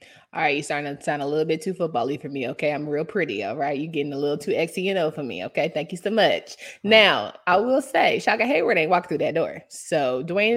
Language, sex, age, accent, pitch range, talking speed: English, female, 20-39, American, 160-200 Hz, 255 wpm